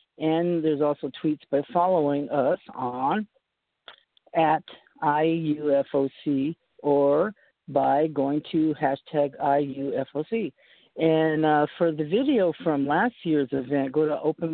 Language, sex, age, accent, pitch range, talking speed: English, male, 50-69, American, 135-170 Hz, 115 wpm